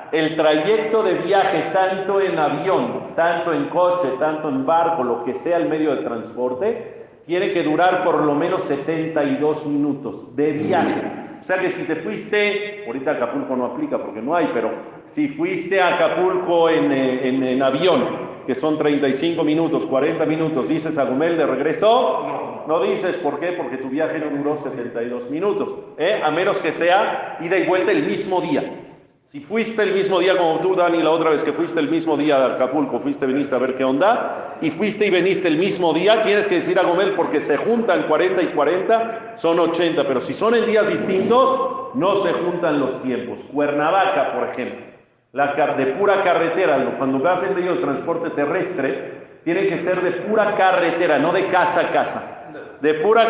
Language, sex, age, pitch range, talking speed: Spanish, male, 50-69, 145-195 Hz, 190 wpm